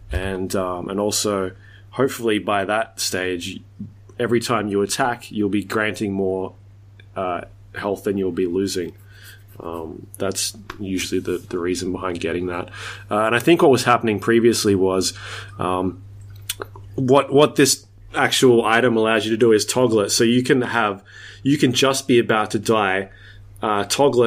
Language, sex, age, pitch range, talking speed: English, male, 20-39, 100-115 Hz, 165 wpm